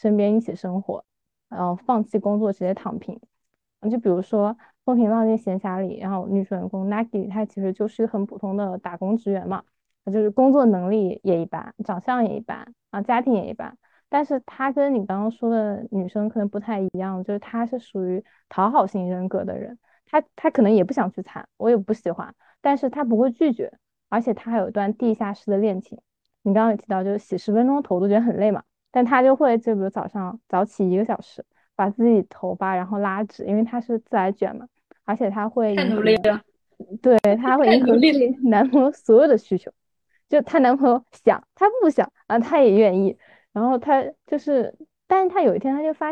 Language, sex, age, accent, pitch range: Chinese, female, 20-39, native, 195-245 Hz